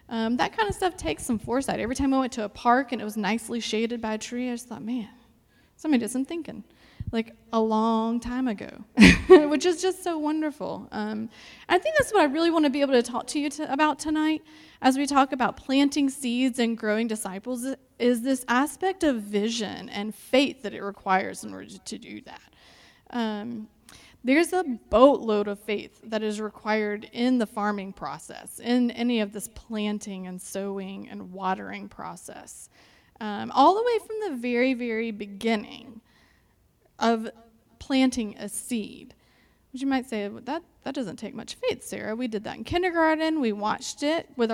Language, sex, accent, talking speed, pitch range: English, female, American, 190 wpm, 220-285 Hz